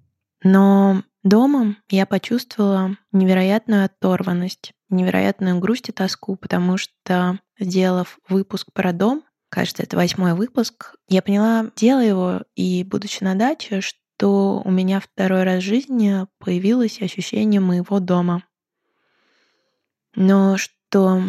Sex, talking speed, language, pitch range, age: female, 115 wpm, Russian, 180-205 Hz, 20-39